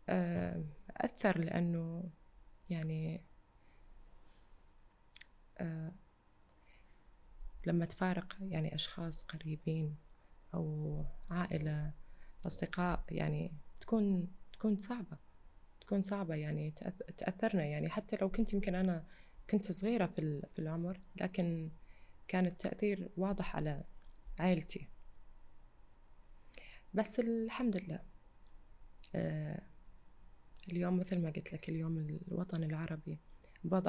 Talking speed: 85 wpm